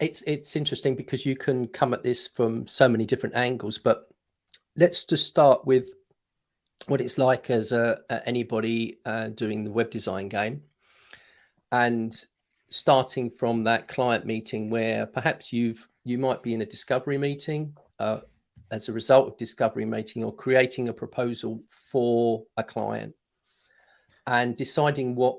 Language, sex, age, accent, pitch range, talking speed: English, male, 40-59, British, 115-130 Hz, 155 wpm